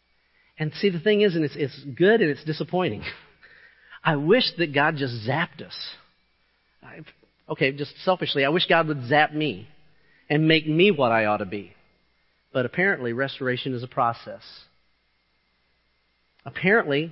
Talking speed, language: 155 wpm, English